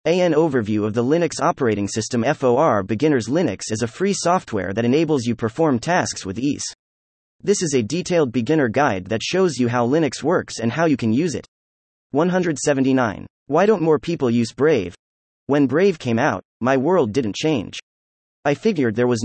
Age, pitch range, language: 30-49, 110-160 Hz, English